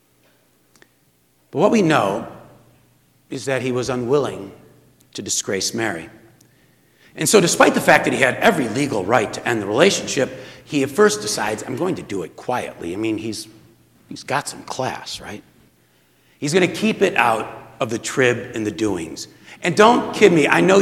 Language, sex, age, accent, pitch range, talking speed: English, male, 60-79, American, 105-155 Hz, 180 wpm